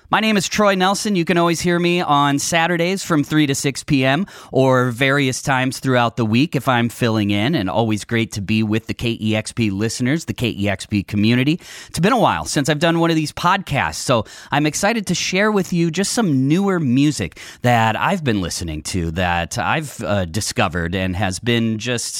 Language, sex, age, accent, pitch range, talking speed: English, male, 30-49, American, 105-155 Hz, 200 wpm